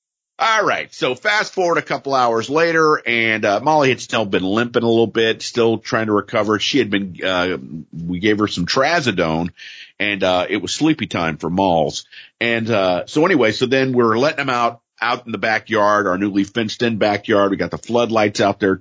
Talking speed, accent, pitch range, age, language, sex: 210 wpm, American, 95-120 Hz, 50-69, English, male